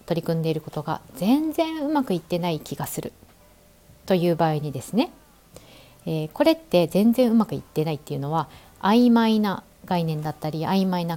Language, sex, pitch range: Japanese, female, 155-220 Hz